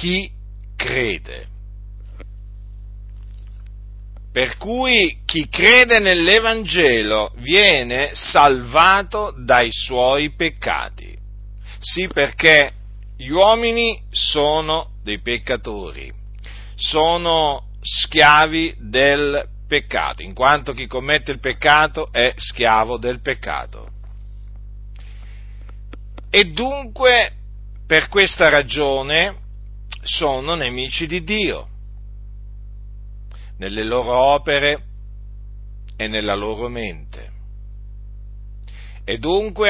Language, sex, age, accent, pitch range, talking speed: Italian, male, 50-69, native, 100-155 Hz, 75 wpm